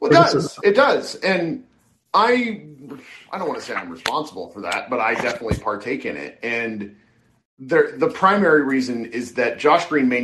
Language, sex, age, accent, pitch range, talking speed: English, male, 40-59, American, 125-170 Hz, 175 wpm